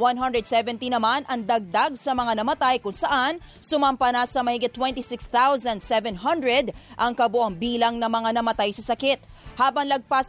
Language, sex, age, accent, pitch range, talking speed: English, female, 20-39, Filipino, 235-275 Hz, 140 wpm